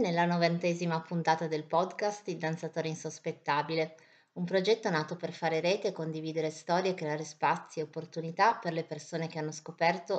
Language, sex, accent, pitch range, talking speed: Italian, female, native, 155-185 Hz, 165 wpm